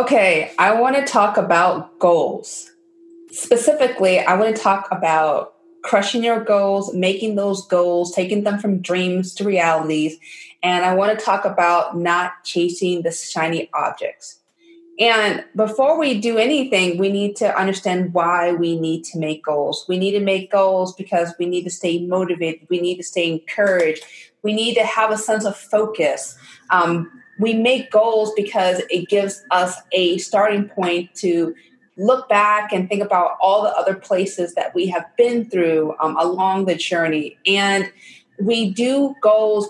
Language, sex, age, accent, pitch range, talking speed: English, female, 30-49, American, 180-220 Hz, 165 wpm